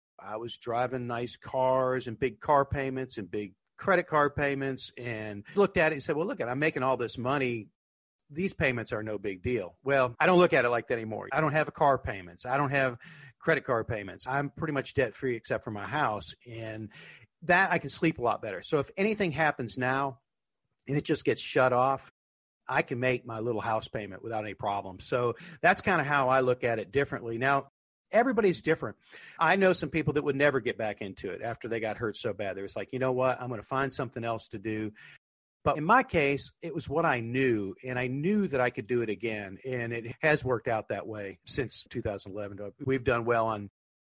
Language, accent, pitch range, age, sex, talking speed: English, American, 110-145 Hz, 50-69, male, 230 wpm